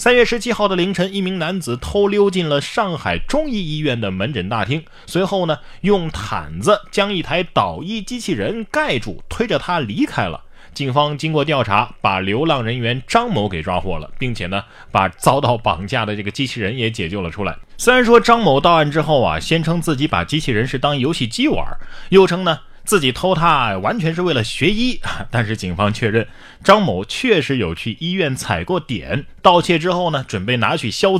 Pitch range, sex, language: 105-175 Hz, male, Chinese